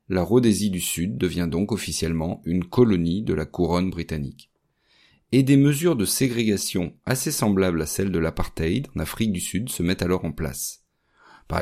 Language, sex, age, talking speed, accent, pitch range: French, male, 40-59, 175 wpm, French, 85-110 Hz